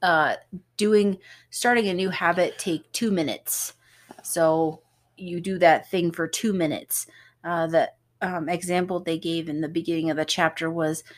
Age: 30-49